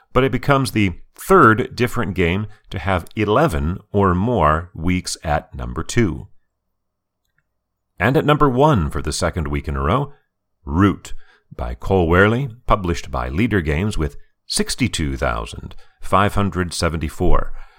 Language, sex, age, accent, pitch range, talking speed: English, male, 40-59, American, 75-110 Hz, 125 wpm